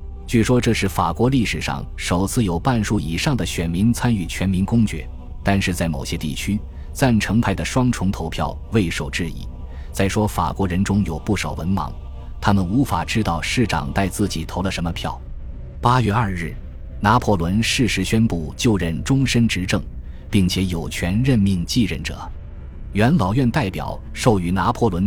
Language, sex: Chinese, male